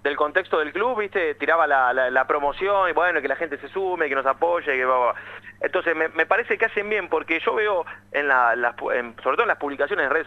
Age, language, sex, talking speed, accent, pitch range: 30-49, Spanish, male, 245 wpm, Argentinian, 140-205 Hz